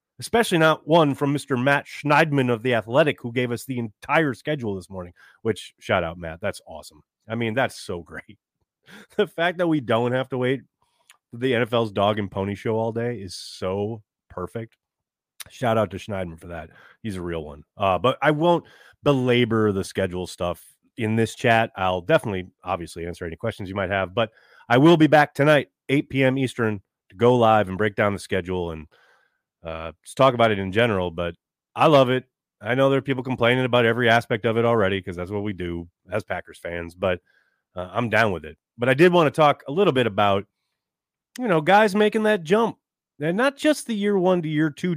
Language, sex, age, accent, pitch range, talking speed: English, male, 30-49, American, 100-145 Hz, 210 wpm